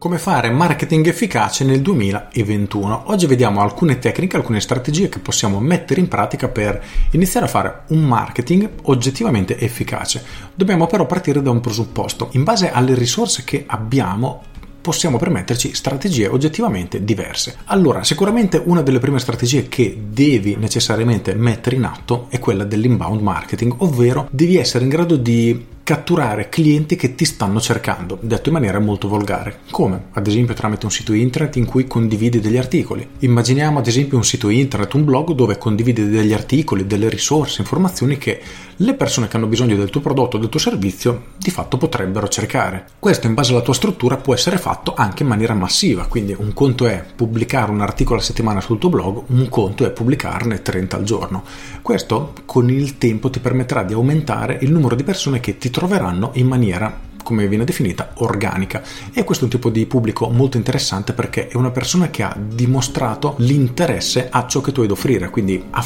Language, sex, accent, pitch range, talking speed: Italian, male, native, 110-140 Hz, 180 wpm